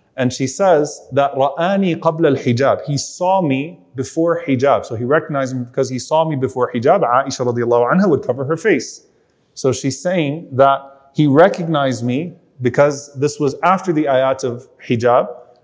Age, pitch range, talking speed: 30-49, 135-185 Hz, 170 wpm